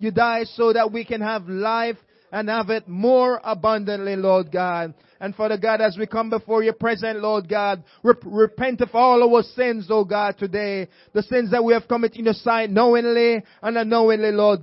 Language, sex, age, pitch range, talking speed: English, male, 30-49, 225-270 Hz, 195 wpm